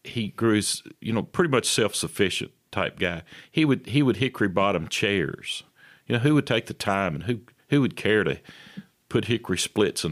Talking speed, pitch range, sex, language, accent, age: 200 wpm, 95-120 Hz, male, English, American, 50-69